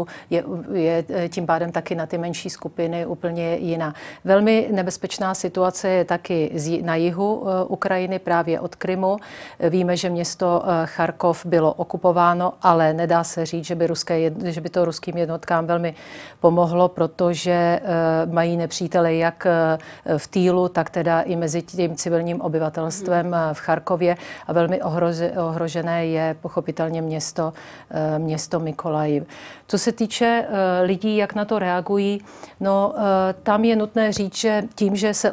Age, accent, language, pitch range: 40-59, native, Czech, 170-190 Hz